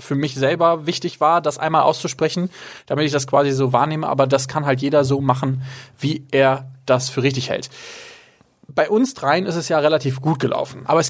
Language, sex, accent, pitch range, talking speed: German, male, German, 130-160 Hz, 205 wpm